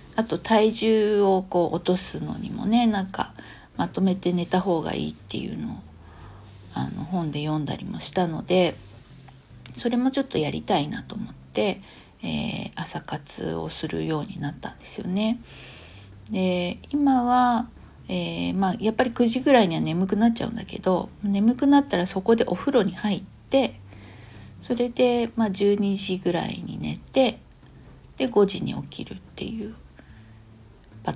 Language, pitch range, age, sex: Japanese, 150-220 Hz, 50-69, female